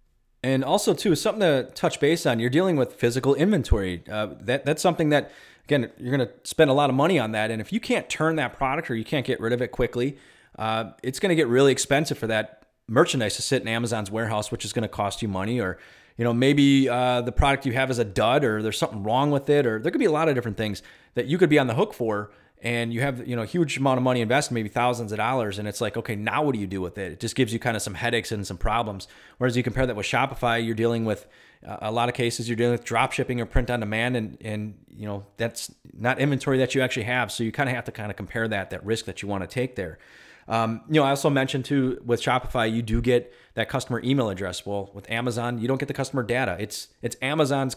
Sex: male